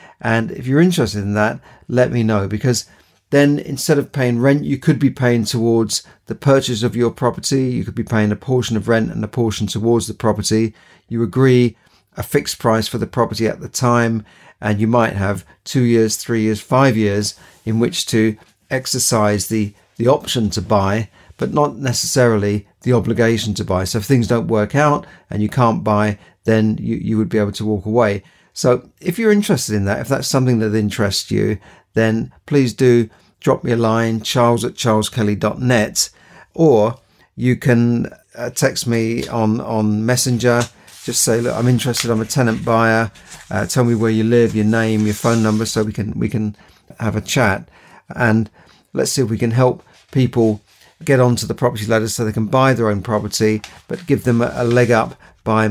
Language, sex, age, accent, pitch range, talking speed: English, male, 40-59, British, 110-125 Hz, 195 wpm